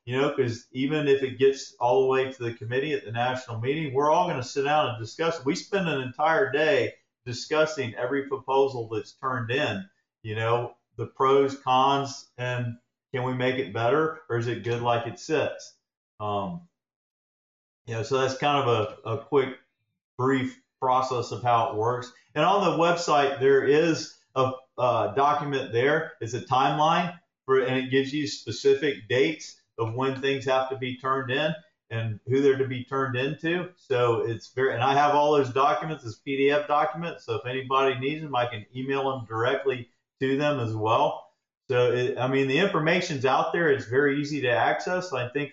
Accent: American